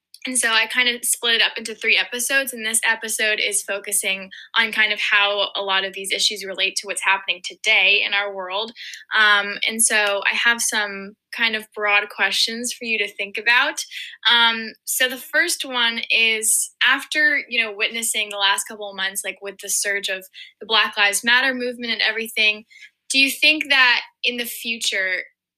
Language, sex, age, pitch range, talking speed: English, female, 10-29, 195-235 Hz, 190 wpm